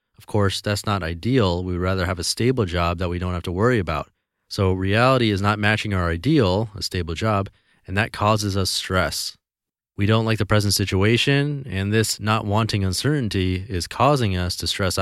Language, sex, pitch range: English, male, 95-115 Hz